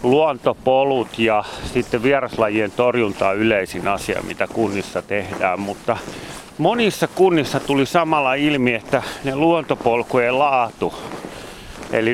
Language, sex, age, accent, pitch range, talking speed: Finnish, male, 30-49, native, 110-135 Hz, 110 wpm